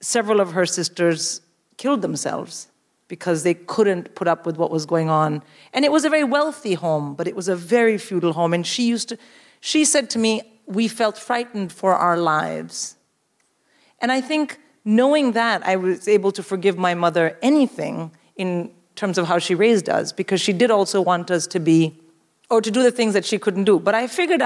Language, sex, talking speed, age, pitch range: English, female, 205 wpm, 40-59, 180-240 Hz